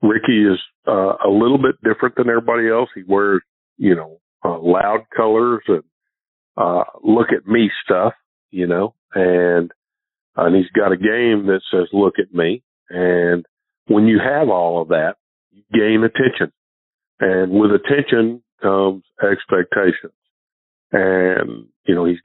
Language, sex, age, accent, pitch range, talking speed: English, male, 50-69, American, 90-115 Hz, 150 wpm